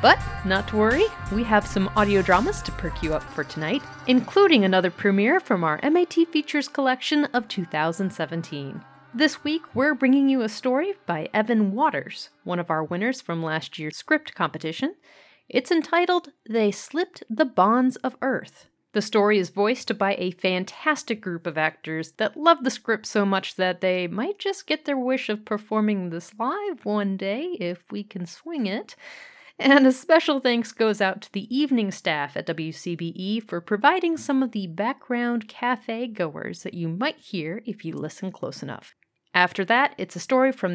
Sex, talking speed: female, 175 wpm